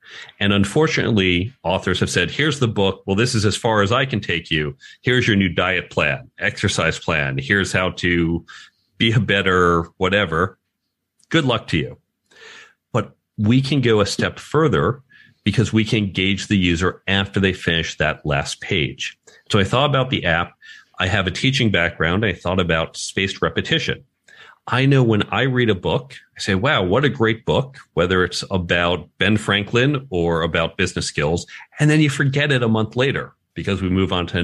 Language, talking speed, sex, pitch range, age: English, 190 wpm, male, 90-120 Hz, 40-59